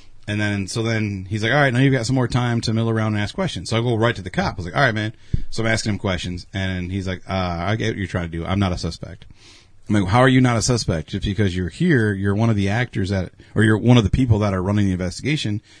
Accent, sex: American, male